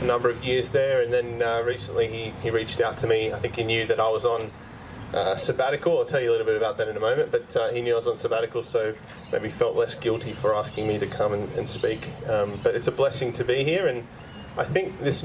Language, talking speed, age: English, 270 wpm, 20-39